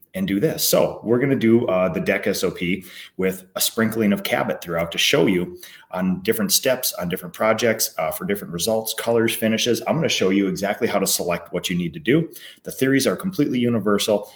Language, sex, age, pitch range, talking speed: English, male, 30-49, 95-125 Hz, 215 wpm